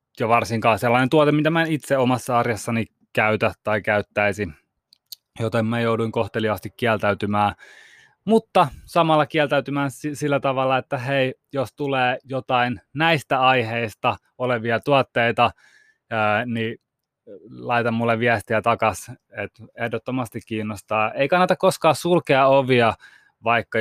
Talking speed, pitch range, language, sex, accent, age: 115 wpm, 110-135 Hz, Finnish, male, native, 20-39